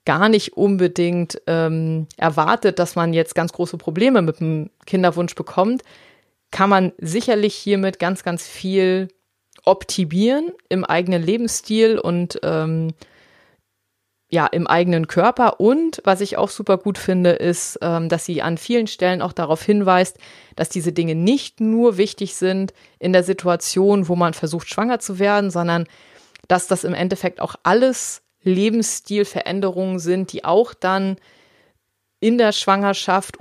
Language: German